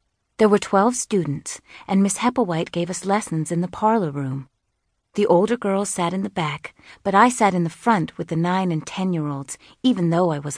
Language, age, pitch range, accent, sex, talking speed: English, 40-59, 155-200 Hz, American, female, 205 wpm